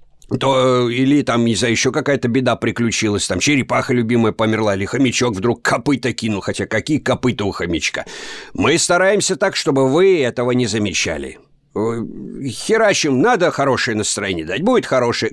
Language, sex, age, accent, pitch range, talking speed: Russian, male, 50-69, native, 115-150 Hz, 150 wpm